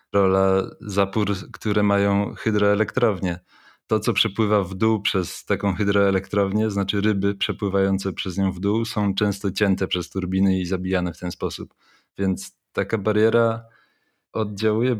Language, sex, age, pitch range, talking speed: Polish, male, 20-39, 95-110 Hz, 135 wpm